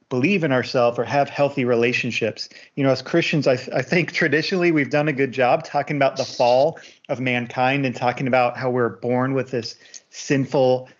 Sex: male